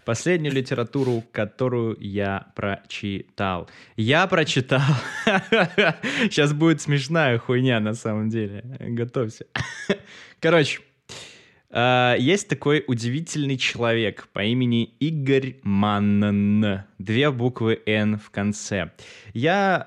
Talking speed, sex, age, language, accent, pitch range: 90 wpm, male, 20-39, Russian, native, 115-155 Hz